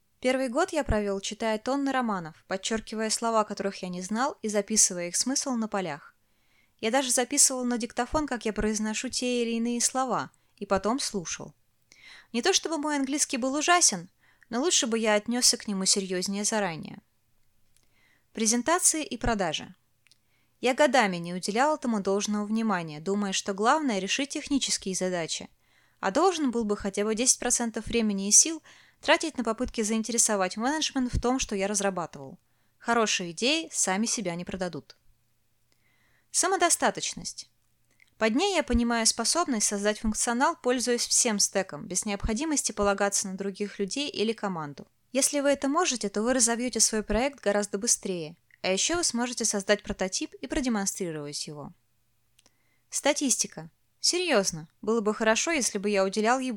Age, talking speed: 20-39, 150 wpm